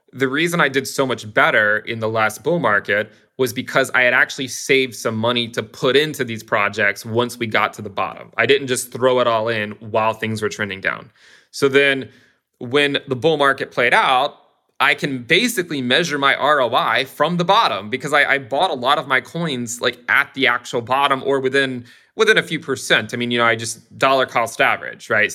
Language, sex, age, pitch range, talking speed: English, male, 20-39, 115-140 Hz, 215 wpm